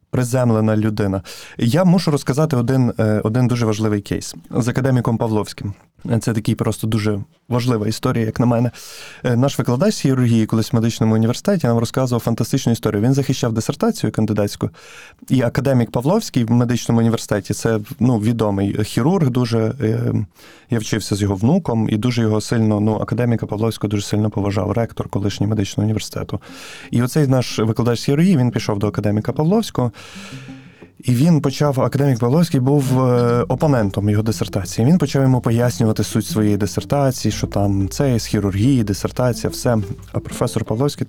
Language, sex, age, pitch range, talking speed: Ukrainian, male, 20-39, 105-130 Hz, 150 wpm